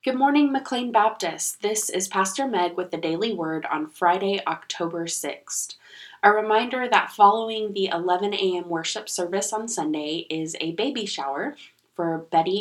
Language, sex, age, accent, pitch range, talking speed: English, female, 20-39, American, 165-215 Hz, 155 wpm